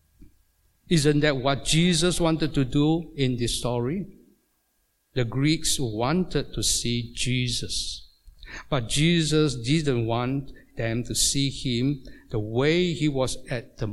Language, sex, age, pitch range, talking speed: English, male, 60-79, 115-155 Hz, 130 wpm